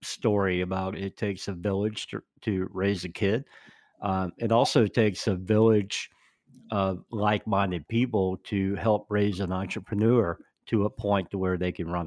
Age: 50-69